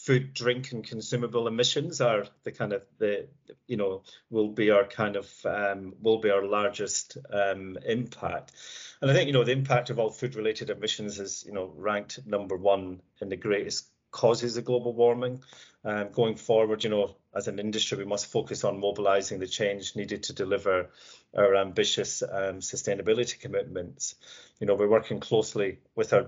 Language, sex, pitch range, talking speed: English, male, 100-125 Hz, 180 wpm